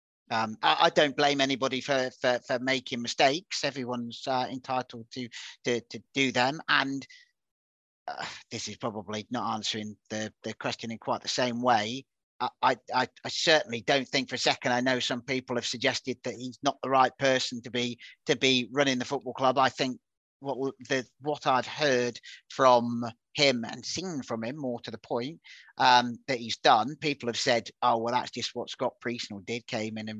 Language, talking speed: English, 195 wpm